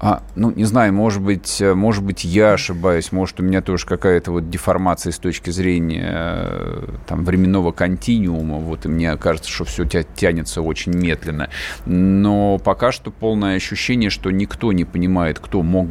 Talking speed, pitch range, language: 160 wpm, 80-100 Hz, Russian